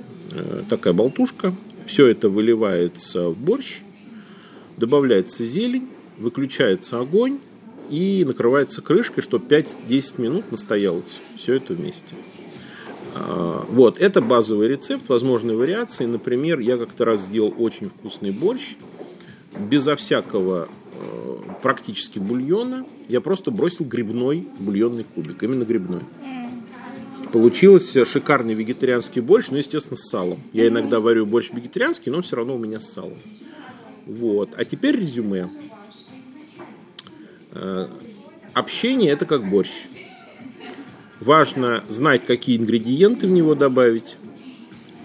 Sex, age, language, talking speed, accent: male, 40-59, Russian, 110 wpm, native